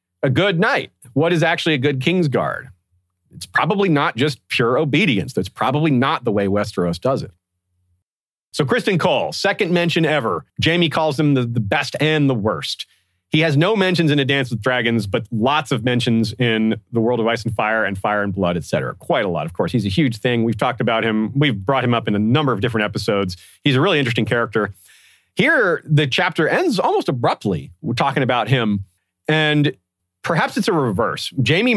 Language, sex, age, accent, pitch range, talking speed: English, male, 40-59, American, 105-150 Hz, 205 wpm